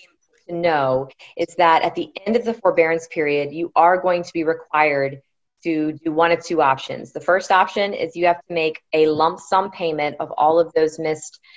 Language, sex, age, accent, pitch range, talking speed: English, female, 20-39, American, 145-170 Hz, 205 wpm